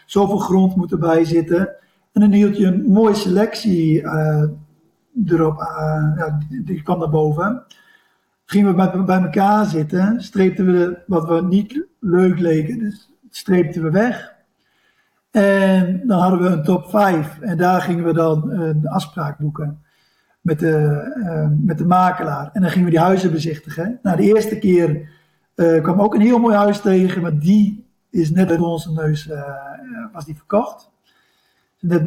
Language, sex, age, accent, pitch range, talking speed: Dutch, male, 50-69, Dutch, 165-195 Hz, 170 wpm